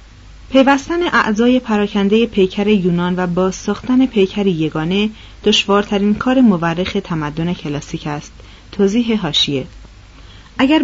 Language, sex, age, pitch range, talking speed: Persian, female, 40-59, 180-240 Hz, 105 wpm